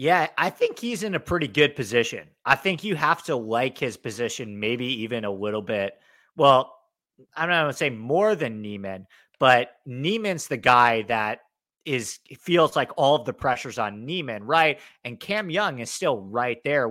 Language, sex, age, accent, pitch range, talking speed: English, male, 30-49, American, 120-170 Hz, 190 wpm